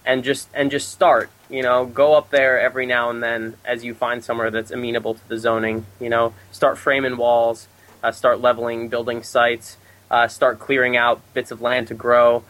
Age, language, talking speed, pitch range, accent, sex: 20-39, English, 200 wpm, 115-135 Hz, American, male